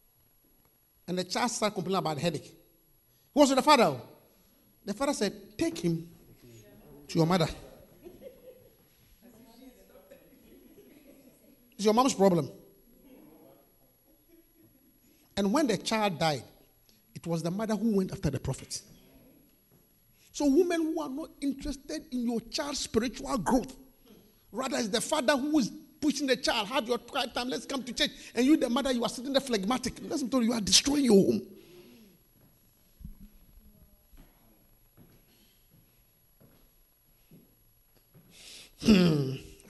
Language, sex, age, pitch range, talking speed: English, male, 50-69, 190-290 Hz, 125 wpm